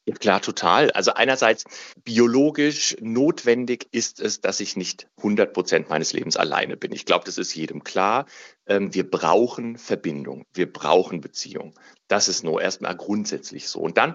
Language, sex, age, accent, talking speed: German, male, 40-59, German, 160 wpm